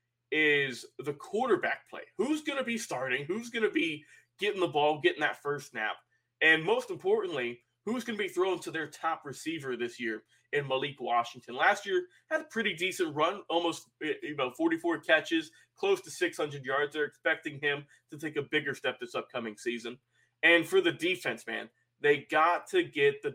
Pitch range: 135-225 Hz